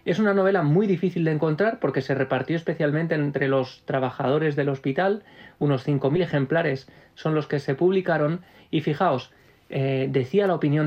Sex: male